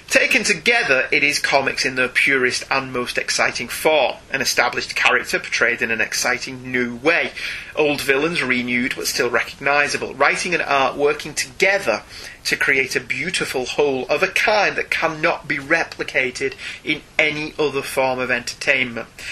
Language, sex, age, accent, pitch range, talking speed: English, male, 30-49, British, 135-185 Hz, 155 wpm